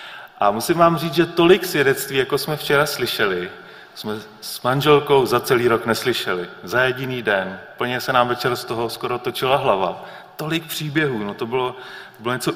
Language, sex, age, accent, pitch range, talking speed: Czech, male, 30-49, native, 115-155 Hz, 175 wpm